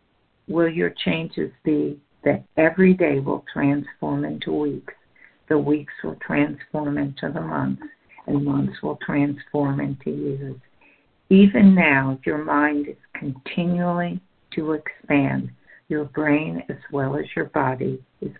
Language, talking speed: English, 130 wpm